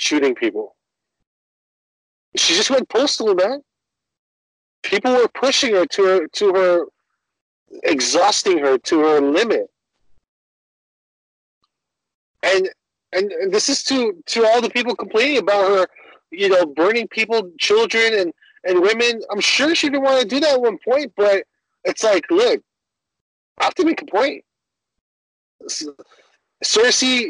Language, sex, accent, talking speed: English, male, American, 140 wpm